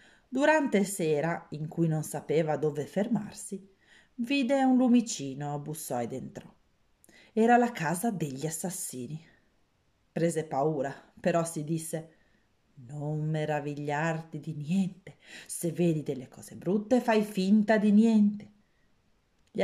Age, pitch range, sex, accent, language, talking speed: 40-59, 155-225 Hz, female, native, Italian, 115 wpm